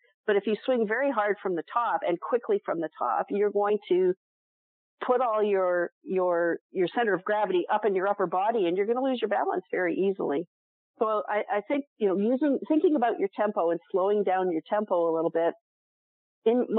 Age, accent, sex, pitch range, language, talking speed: 50-69, American, female, 175-220 Hz, English, 210 wpm